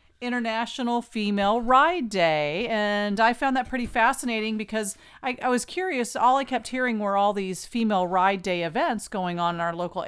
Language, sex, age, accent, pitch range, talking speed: English, female, 40-59, American, 200-255 Hz, 185 wpm